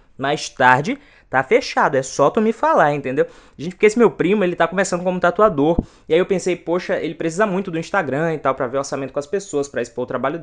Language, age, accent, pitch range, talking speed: Portuguese, 20-39, Brazilian, 145-225 Hz, 240 wpm